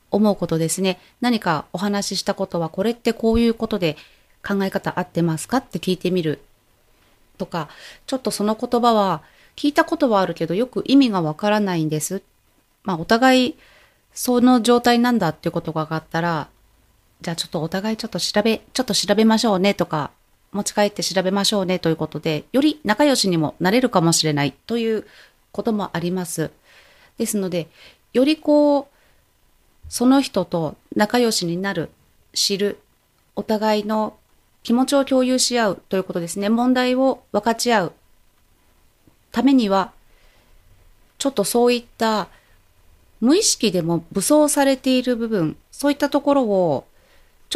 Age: 30-49